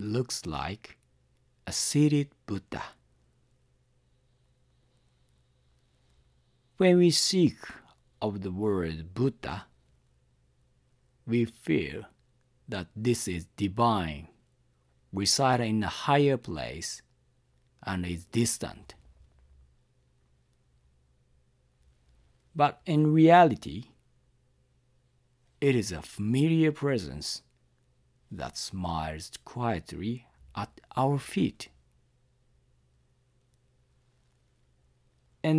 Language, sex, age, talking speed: English, male, 50-69, 70 wpm